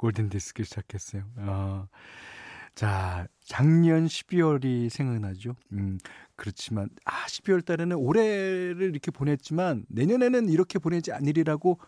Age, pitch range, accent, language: 40-59, 105-160 Hz, native, Korean